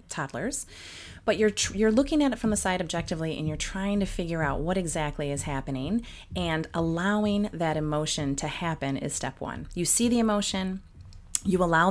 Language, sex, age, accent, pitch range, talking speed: English, female, 30-49, American, 145-190 Hz, 185 wpm